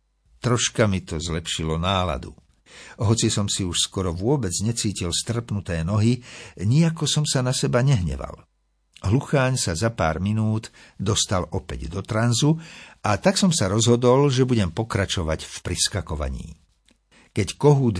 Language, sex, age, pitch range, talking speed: Slovak, male, 60-79, 85-125 Hz, 135 wpm